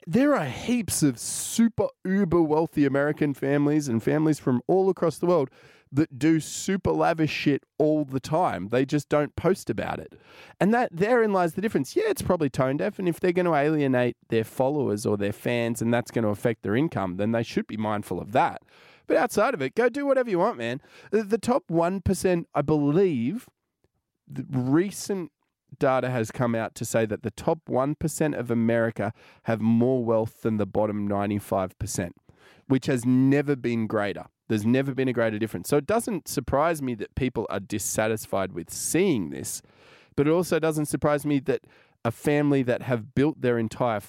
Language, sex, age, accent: English, male, 20-39, Australian